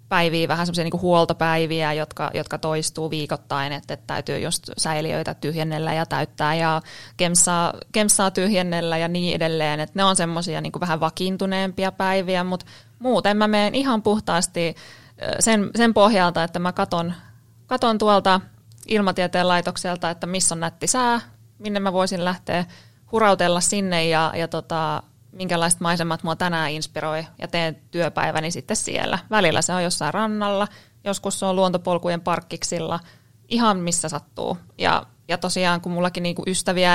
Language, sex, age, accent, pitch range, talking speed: Finnish, female, 20-39, native, 160-185 Hz, 145 wpm